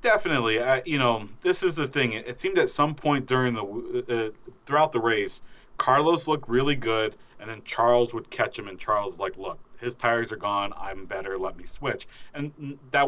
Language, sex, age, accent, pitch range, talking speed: English, male, 40-59, American, 110-135 Hz, 210 wpm